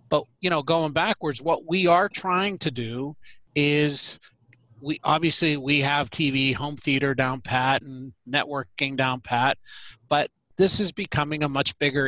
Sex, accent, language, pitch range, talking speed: male, American, English, 130-165 Hz, 160 wpm